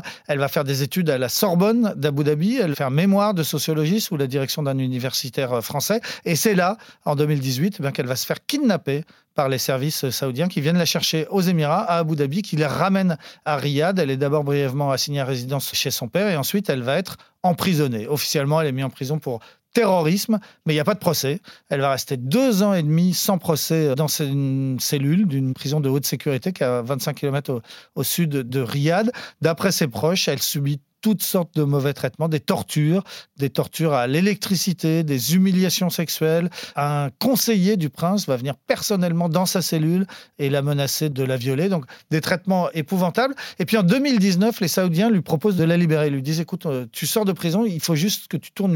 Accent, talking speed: French, 210 wpm